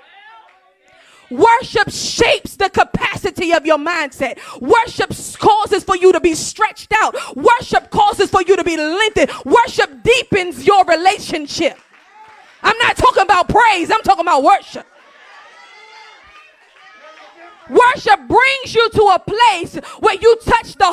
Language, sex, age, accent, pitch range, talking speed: English, female, 20-39, American, 330-430 Hz, 130 wpm